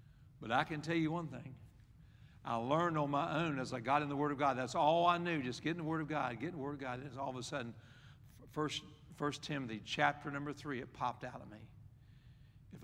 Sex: male